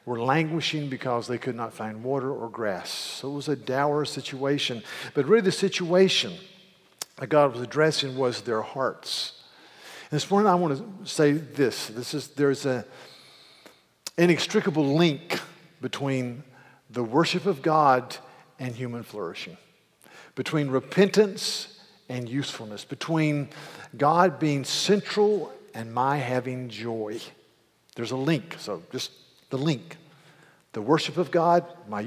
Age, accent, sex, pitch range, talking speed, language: 50-69, American, male, 130-170 Hz, 135 wpm, English